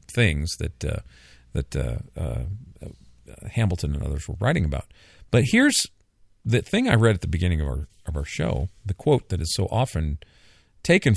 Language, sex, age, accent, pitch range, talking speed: English, male, 50-69, American, 80-110 Hz, 185 wpm